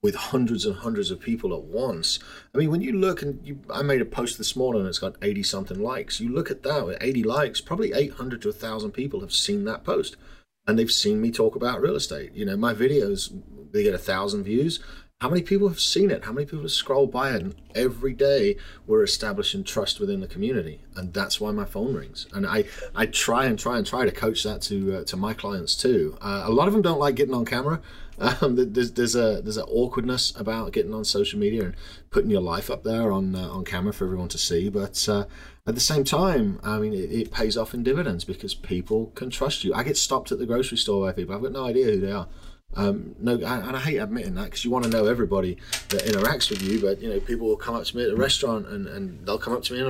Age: 30-49